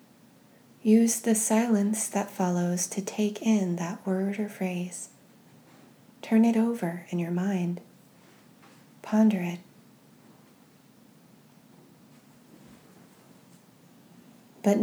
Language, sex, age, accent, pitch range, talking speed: English, female, 20-39, American, 180-220 Hz, 85 wpm